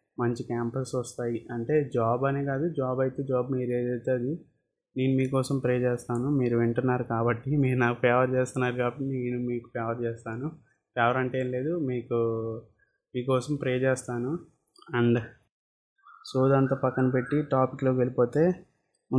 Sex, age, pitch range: male, 20-39, 120-130 Hz